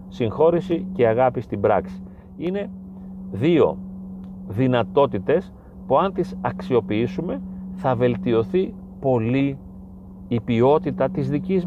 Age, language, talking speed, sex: 40-59, Greek, 100 wpm, male